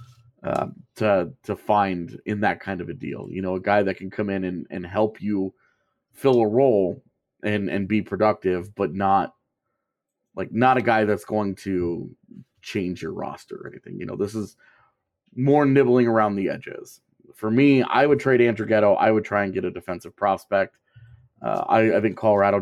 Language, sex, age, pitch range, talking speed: English, male, 30-49, 95-120 Hz, 190 wpm